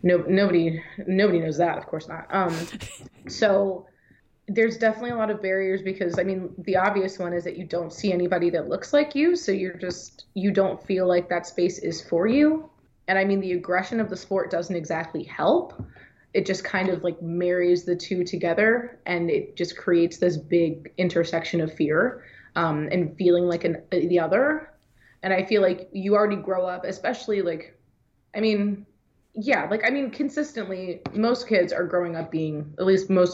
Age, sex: 20-39, female